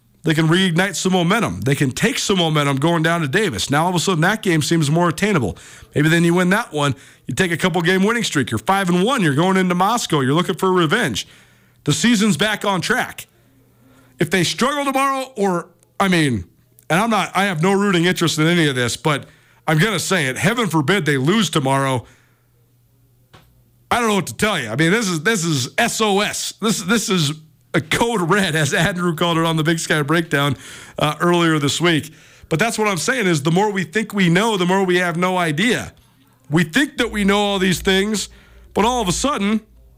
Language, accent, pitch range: English, American, 150-200 Hz